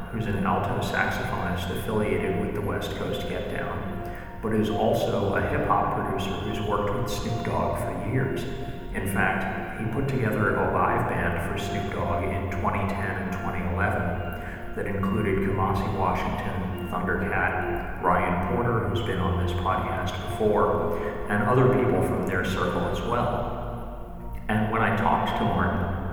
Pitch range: 95-115 Hz